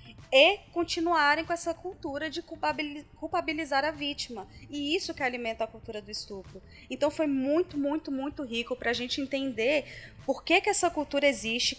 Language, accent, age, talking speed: Portuguese, Brazilian, 20-39, 170 wpm